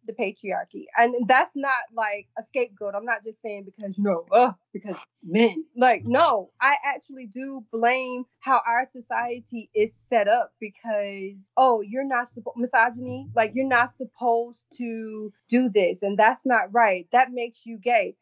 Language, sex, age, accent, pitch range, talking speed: English, female, 20-39, American, 220-280 Hz, 160 wpm